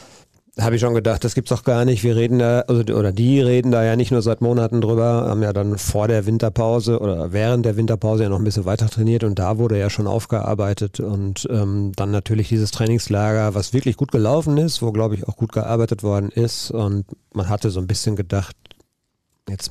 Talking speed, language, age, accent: 220 wpm, German, 40-59, German